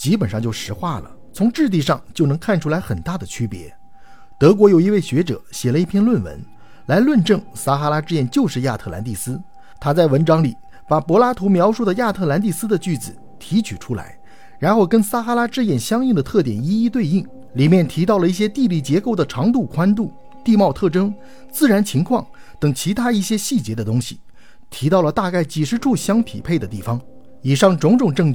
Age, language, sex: 50-69, Chinese, male